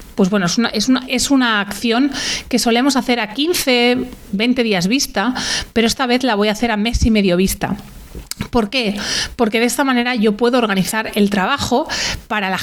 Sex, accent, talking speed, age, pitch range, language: female, Spanish, 185 wpm, 30-49, 195-245 Hz, Spanish